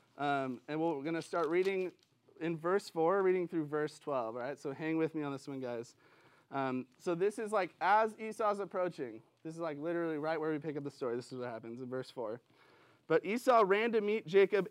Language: English